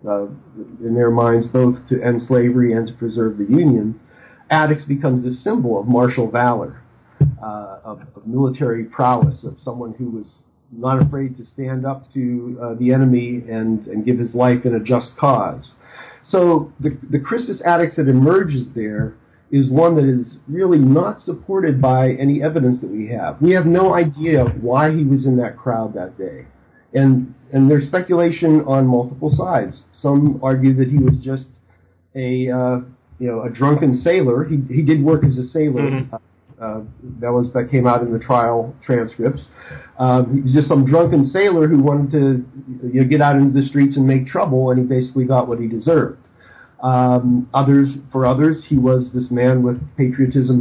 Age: 50-69